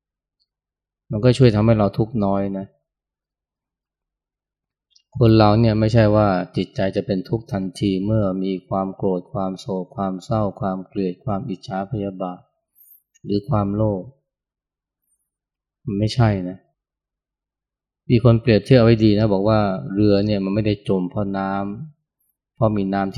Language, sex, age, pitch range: Thai, male, 20-39, 95-110 Hz